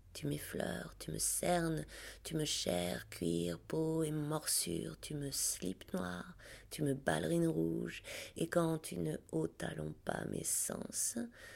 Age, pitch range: 30-49, 90-130 Hz